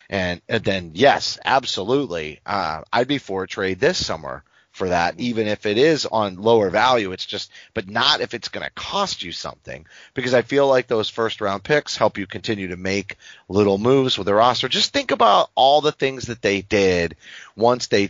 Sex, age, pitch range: male, 30-49, 95-120 Hz